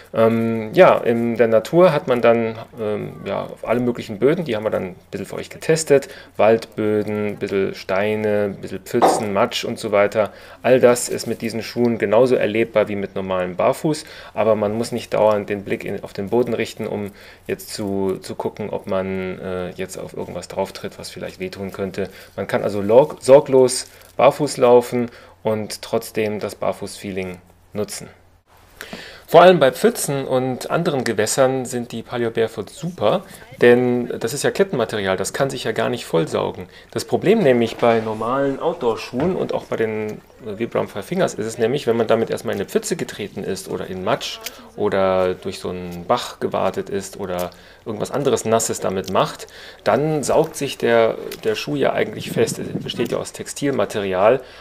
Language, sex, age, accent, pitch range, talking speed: German, male, 30-49, German, 100-125 Hz, 180 wpm